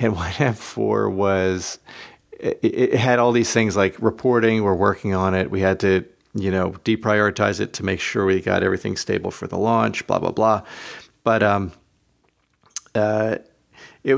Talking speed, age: 165 wpm, 40-59